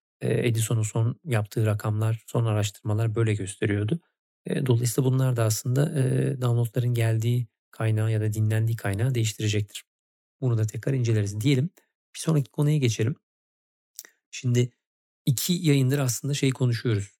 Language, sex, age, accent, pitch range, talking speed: Turkish, male, 40-59, native, 110-135 Hz, 120 wpm